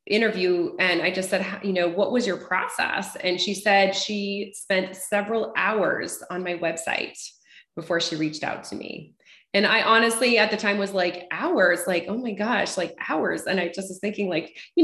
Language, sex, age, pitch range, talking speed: English, female, 20-39, 175-215 Hz, 200 wpm